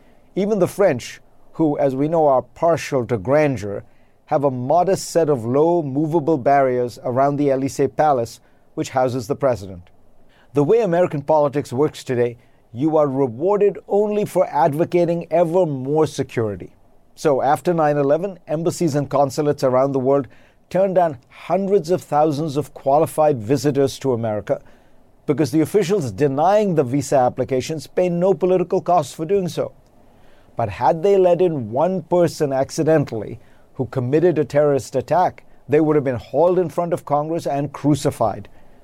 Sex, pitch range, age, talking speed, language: male, 130-170 Hz, 50-69, 155 wpm, English